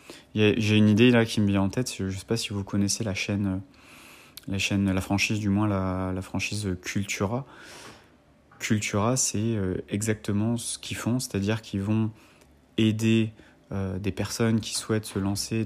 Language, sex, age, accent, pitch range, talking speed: French, male, 30-49, French, 95-115 Hz, 175 wpm